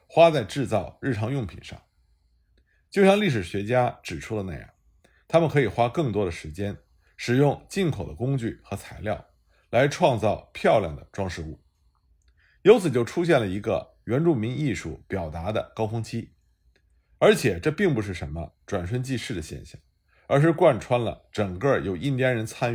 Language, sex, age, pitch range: Chinese, male, 50-69, 85-140 Hz